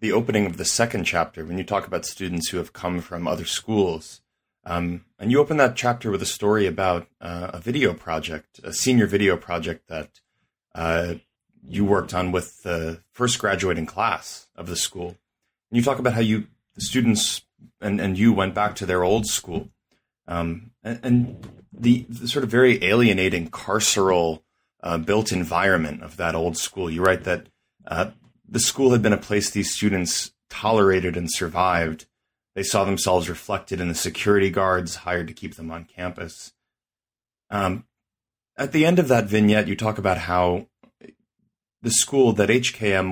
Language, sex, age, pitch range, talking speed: English, male, 30-49, 85-110 Hz, 175 wpm